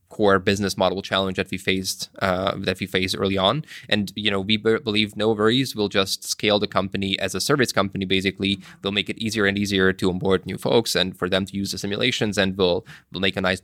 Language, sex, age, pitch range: English, male, 20-39, 95-105 Hz